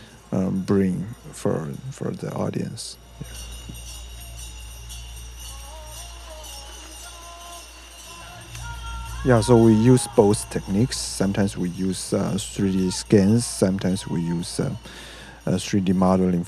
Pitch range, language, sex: 90-115 Hz, Slovak, male